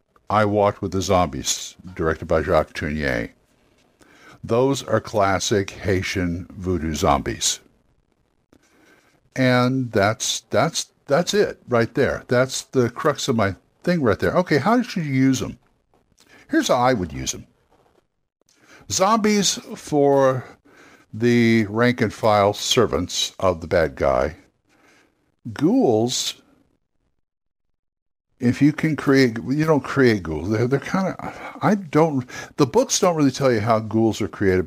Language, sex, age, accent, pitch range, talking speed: English, male, 60-79, American, 100-140 Hz, 135 wpm